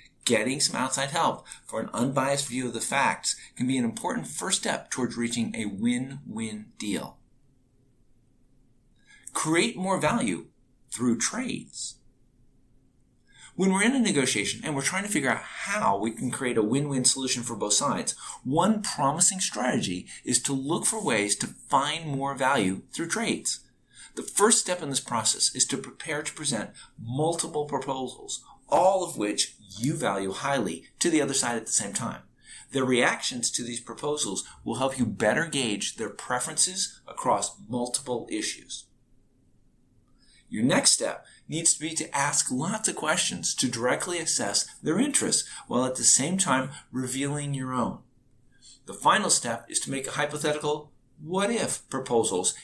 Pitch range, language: 120-145 Hz, English